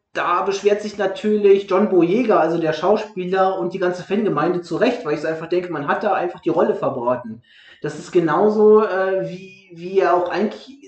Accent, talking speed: German, 195 wpm